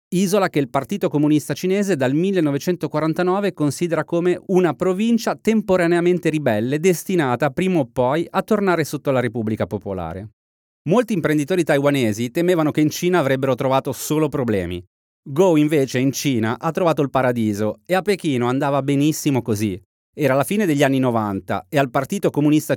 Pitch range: 125-170 Hz